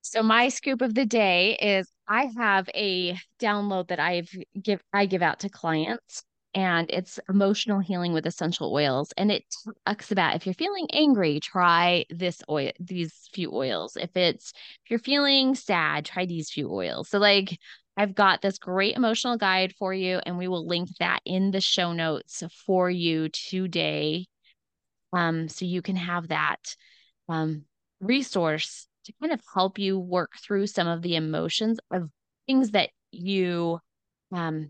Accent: American